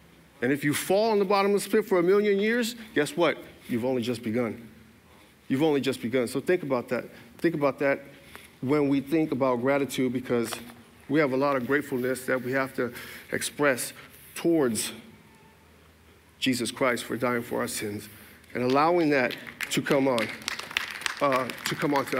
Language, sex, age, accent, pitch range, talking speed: English, male, 50-69, American, 120-165 Hz, 180 wpm